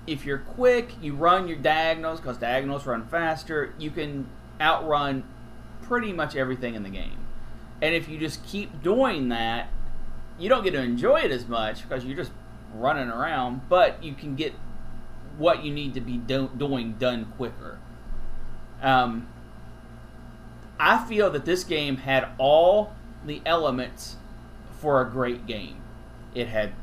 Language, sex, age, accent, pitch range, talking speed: English, male, 30-49, American, 125-160 Hz, 155 wpm